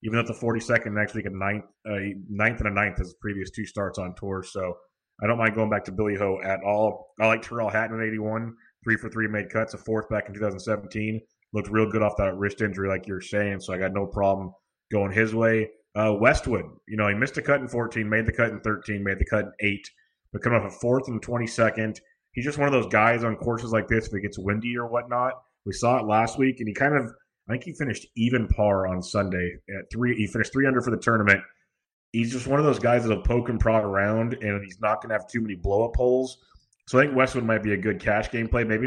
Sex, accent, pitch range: male, American, 100-120 Hz